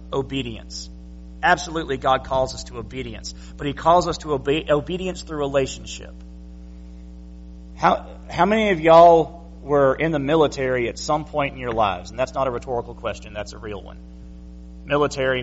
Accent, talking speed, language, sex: American, 165 wpm, English, male